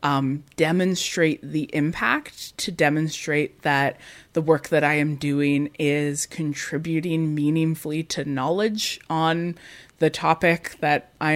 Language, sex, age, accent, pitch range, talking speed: English, female, 20-39, American, 150-185 Hz, 120 wpm